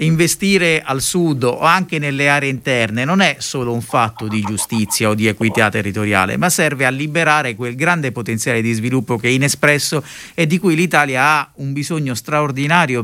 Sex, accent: male, native